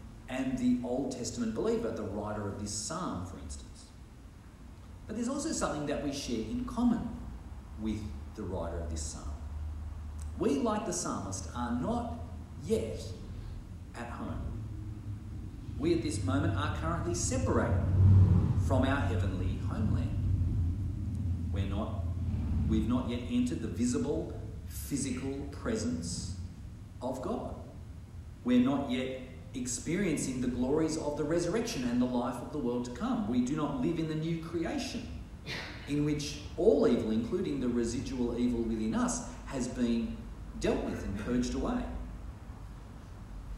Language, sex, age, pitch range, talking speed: English, male, 40-59, 95-130 Hz, 135 wpm